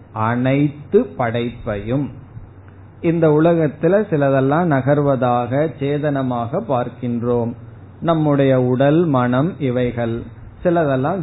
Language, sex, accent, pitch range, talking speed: Tamil, male, native, 125-155 Hz, 70 wpm